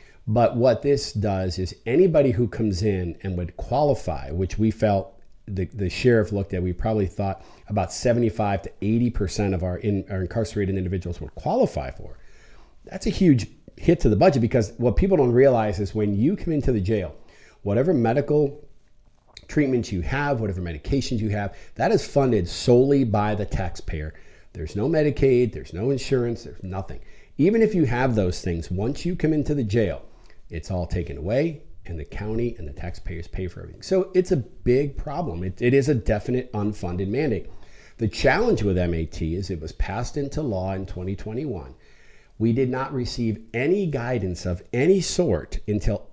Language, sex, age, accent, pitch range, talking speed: English, male, 40-59, American, 95-125 Hz, 180 wpm